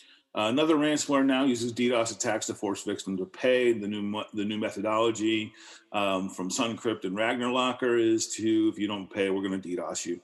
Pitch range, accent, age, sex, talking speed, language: 100-120 Hz, American, 40-59, male, 190 wpm, English